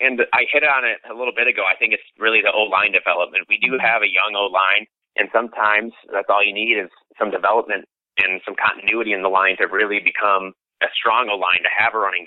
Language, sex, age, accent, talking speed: English, male, 30-49, American, 230 wpm